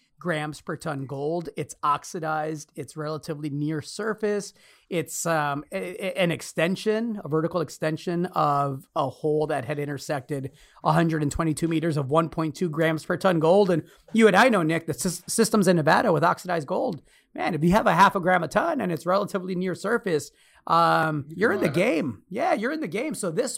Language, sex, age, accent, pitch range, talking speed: English, male, 30-49, American, 150-195 Hz, 190 wpm